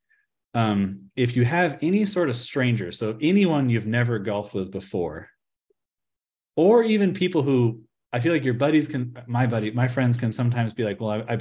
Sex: male